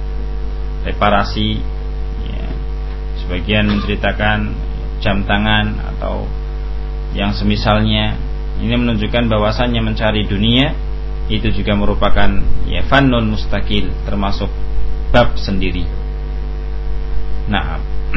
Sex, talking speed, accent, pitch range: male, 75 wpm, native, 75-115 Hz